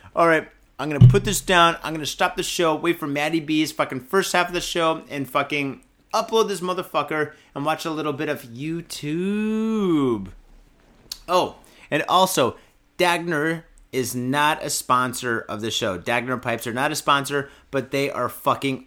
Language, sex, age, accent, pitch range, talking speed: English, male, 30-49, American, 125-165 Hz, 180 wpm